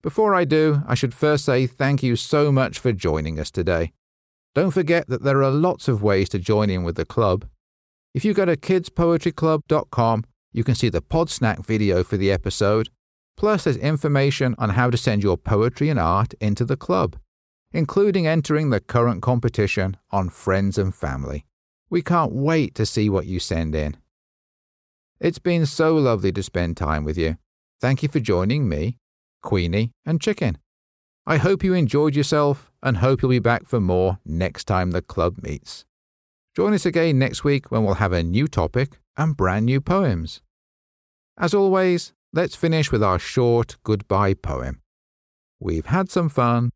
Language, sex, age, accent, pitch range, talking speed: English, male, 50-69, British, 90-150 Hz, 175 wpm